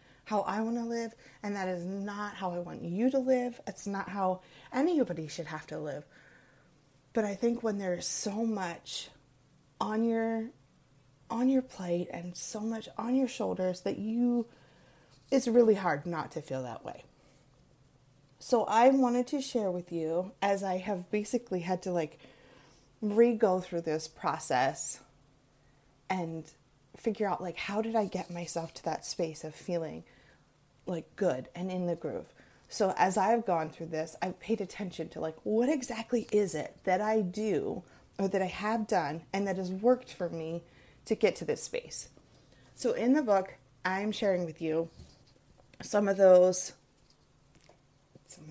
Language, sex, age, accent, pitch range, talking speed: English, female, 30-49, American, 165-220 Hz, 165 wpm